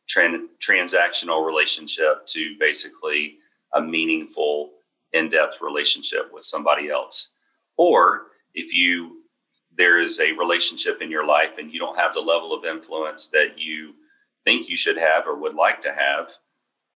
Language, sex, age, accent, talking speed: English, male, 40-59, American, 140 wpm